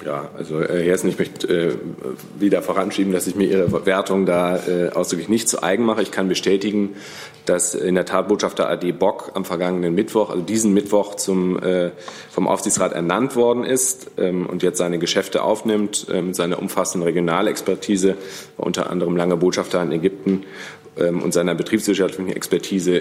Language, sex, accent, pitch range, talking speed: German, male, German, 90-100 Hz, 170 wpm